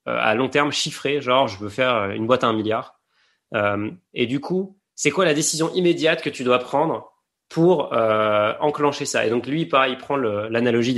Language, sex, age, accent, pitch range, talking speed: French, male, 20-39, French, 120-155 Hz, 210 wpm